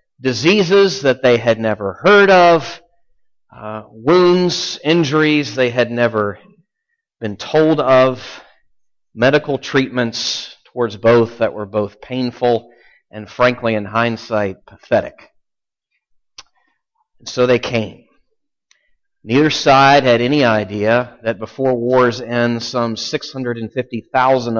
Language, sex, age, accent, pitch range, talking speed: English, male, 40-59, American, 110-145 Hz, 105 wpm